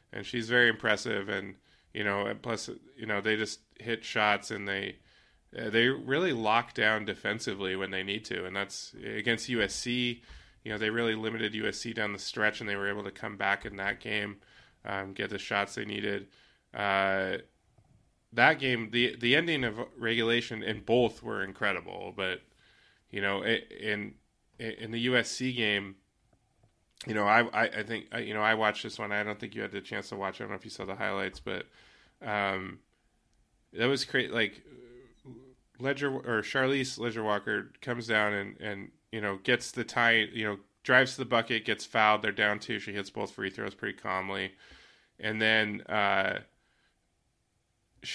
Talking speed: 180 wpm